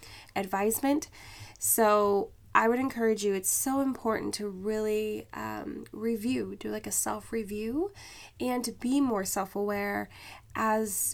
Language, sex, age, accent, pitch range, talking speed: English, female, 10-29, American, 185-230 Hz, 135 wpm